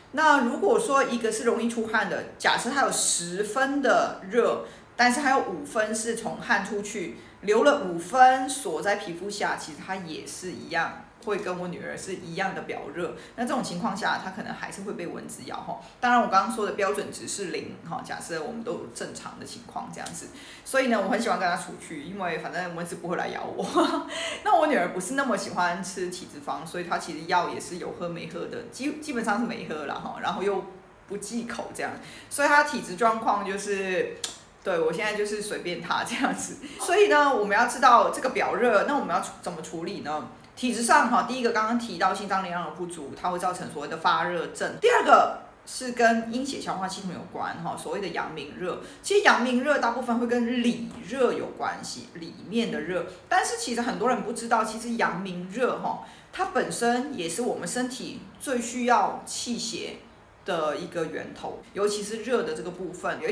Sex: female